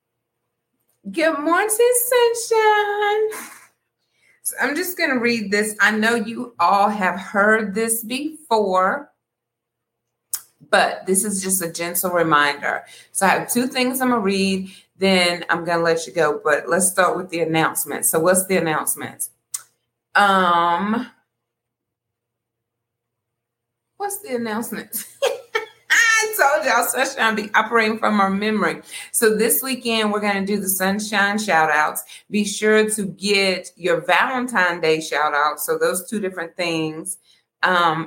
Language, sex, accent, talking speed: English, female, American, 135 wpm